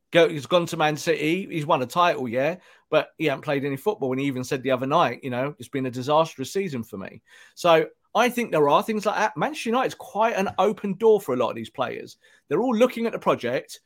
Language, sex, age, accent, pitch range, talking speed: English, male, 40-59, British, 135-205 Hz, 260 wpm